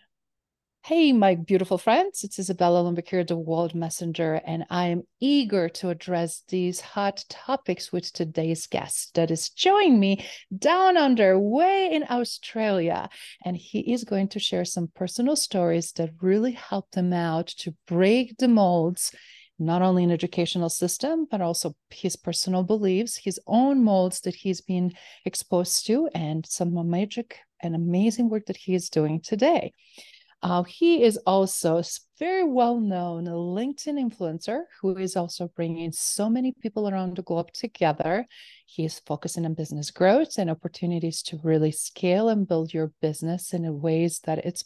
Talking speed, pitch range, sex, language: 155 wpm, 170-215 Hz, female, English